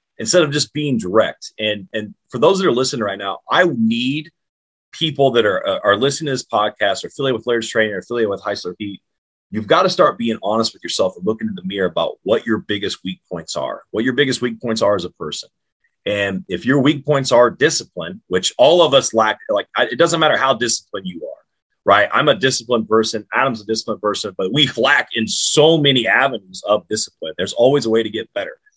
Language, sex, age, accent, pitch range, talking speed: English, male, 30-49, American, 105-135 Hz, 225 wpm